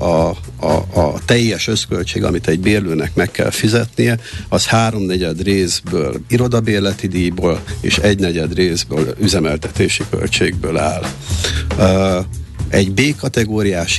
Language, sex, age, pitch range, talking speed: Hungarian, male, 50-69, 90-105 Hz, 105 wpm